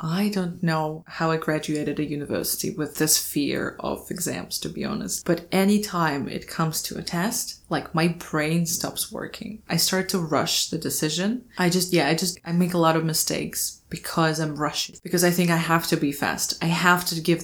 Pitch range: 160-190 Hz